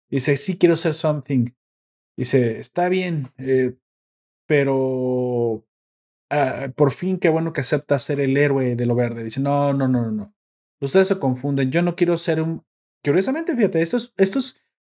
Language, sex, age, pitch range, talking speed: Spanish, male, 30-49, 125-165 Hz, 175 wpm